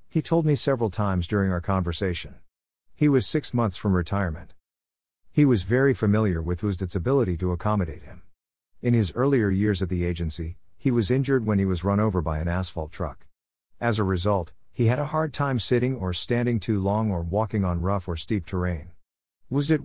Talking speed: 195 wpm